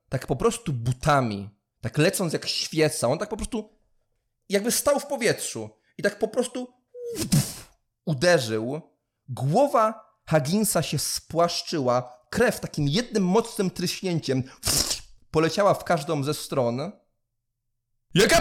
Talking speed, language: 115 wpm, English